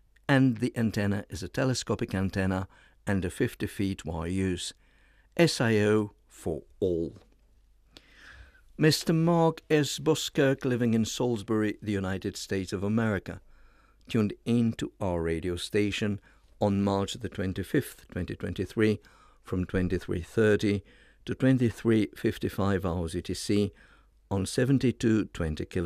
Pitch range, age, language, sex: 95-115 Hz, 60-79, English, male